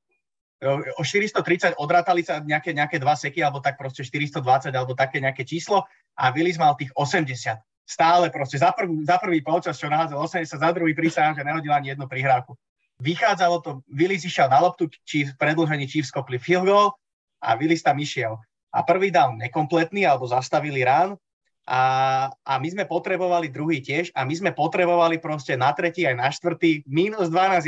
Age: 30-49